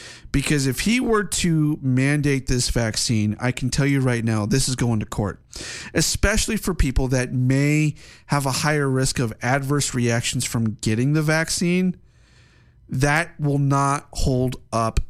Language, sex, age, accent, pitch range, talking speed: English, male, 40-59, American, 115-140 Hz, 160 wpm